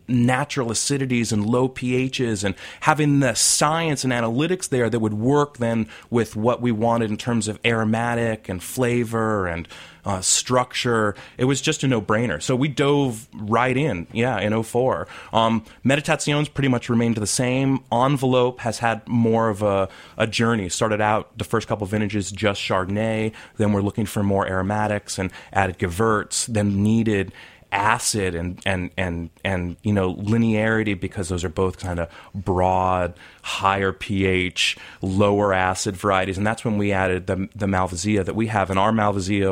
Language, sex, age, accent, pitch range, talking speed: English, male, 30-49, American, 95-120 Hz, 170 wpm